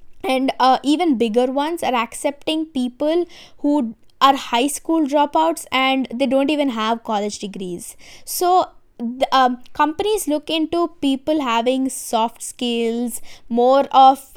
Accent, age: Indian, 20-39